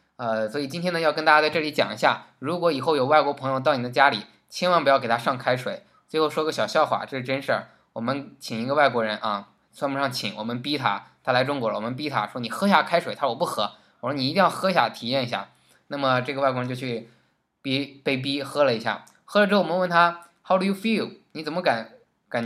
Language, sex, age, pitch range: Chinese, male, 20-39, 120-160 Hz